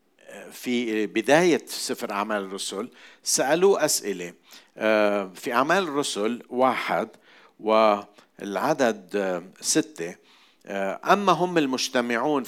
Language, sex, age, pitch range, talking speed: Arabic, male, 50-69, 110-150 Hz, 75 wpm